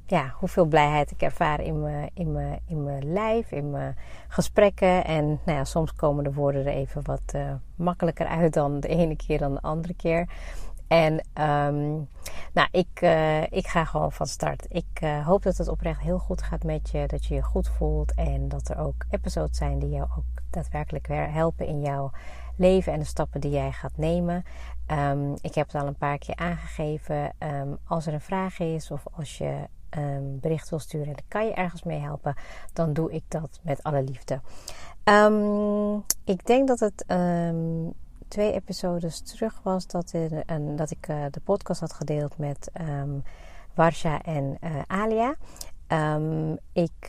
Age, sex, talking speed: 30-49, female, 180 wpm